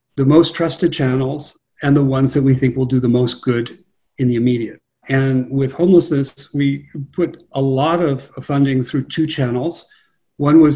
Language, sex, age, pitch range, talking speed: English, male, 40-59, 130-145 Hz, 180 wpm